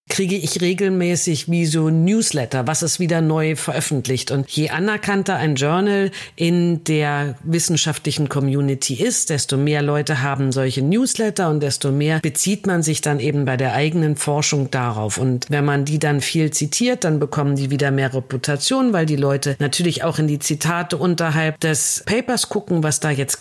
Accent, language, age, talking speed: German, German, 50-69, 175 wpm